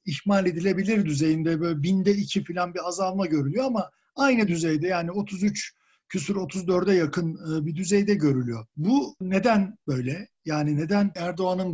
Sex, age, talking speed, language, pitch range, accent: male, 50-69, 140 wpm, Turkish, 165-210 Hz, native